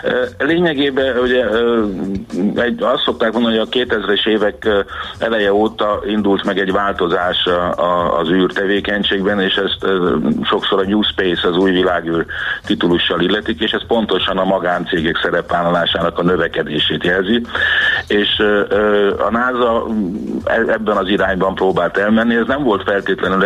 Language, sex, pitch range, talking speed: Hungarian, male, 90-110 Hz, 125 wpm